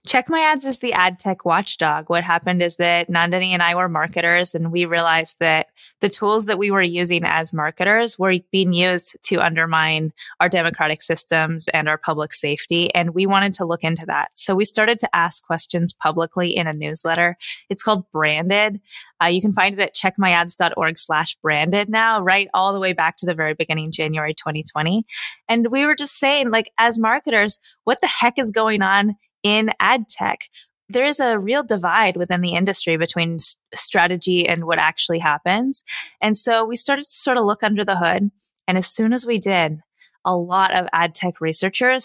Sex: female